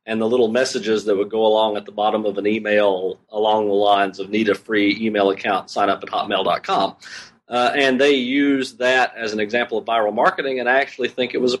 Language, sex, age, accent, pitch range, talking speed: English, male, 40-59, American, 105-125 Hz, 235 wpm